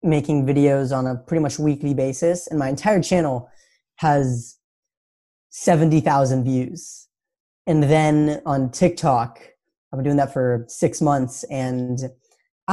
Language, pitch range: English, 130-165 Hz